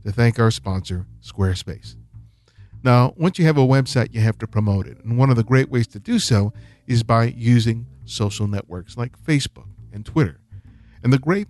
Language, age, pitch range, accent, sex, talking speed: English, 50-69, 105-140 Hz, American, male, 195 wpm